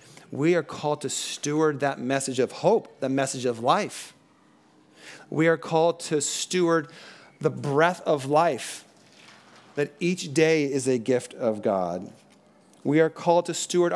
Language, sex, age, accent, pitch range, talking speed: English, male, 40-59, American, 115-160 Hz, 150 wpm